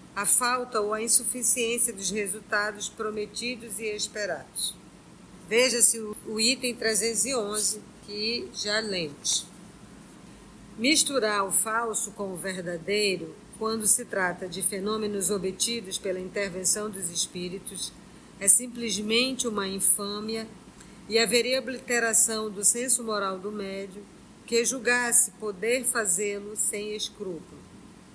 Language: Portuguese